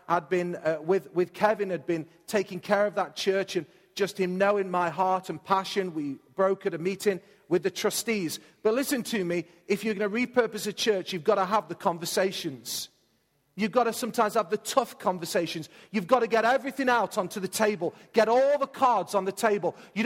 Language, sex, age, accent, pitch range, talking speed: English, male, 40-59, British, 195-240 Hz, 210 wpm